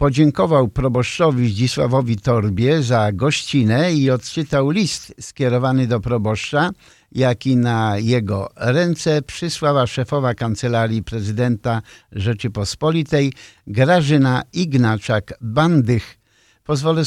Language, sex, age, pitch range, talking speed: Polish, male, 50-69, 115-145 Hz, 85 wpm